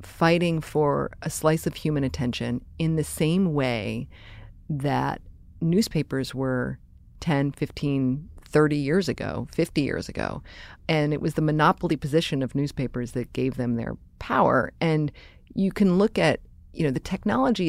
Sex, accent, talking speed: female, American, 150 wpm